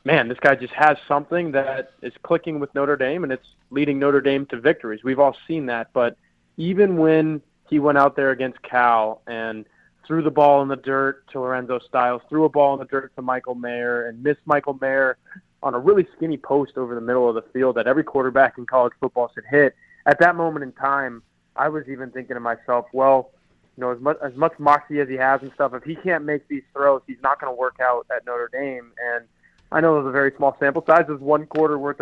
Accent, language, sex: American, English, male